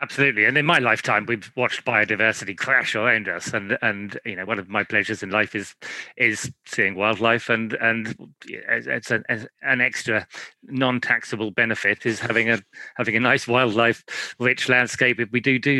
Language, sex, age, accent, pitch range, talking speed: English, male, 40-59, British, 110-135 Hz, 170 wpm